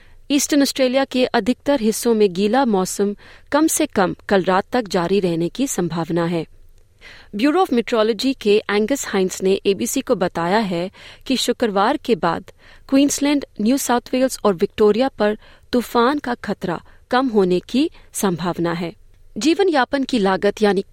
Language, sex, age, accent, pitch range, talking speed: Hindi, female, 30-49, native, 185-250 Hz, 155 wpm